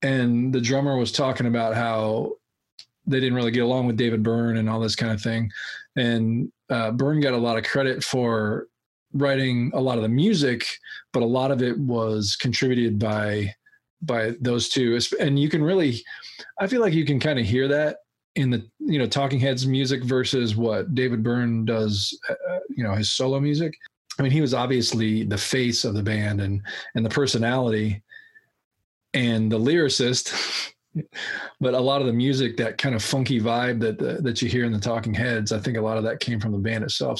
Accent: American